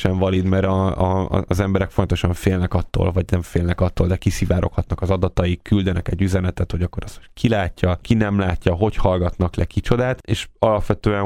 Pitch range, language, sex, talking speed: 90-100 Hz, Hungarian, male, 185 wpm